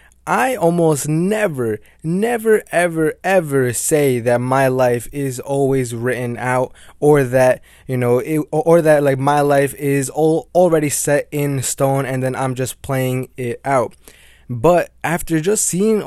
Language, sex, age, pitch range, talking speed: English, male, 20-39, 125-155 Hz, 145 wpm